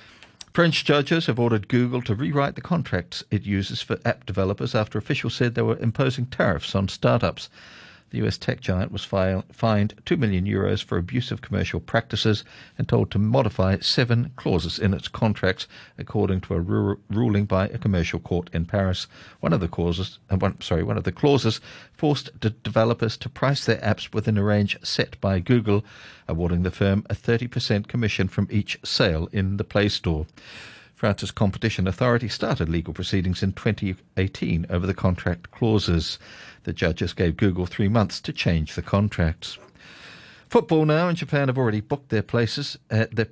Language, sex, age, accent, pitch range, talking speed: English, male, 50-69, British, 95-120 Hz, 160 wpm